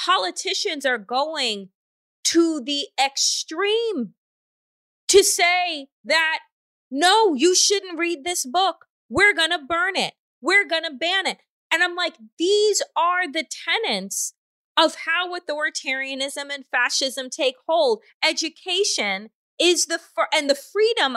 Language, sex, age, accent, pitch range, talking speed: English, female, 20-39, American, 270-360 Hz, 130 wpm